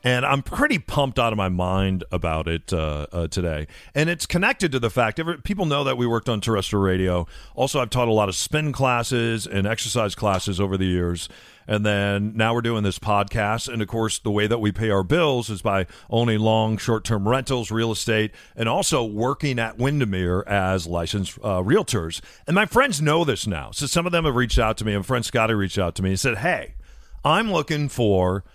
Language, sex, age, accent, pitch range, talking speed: English, male, 40-59, American, 100-125 Hz, 215 wpm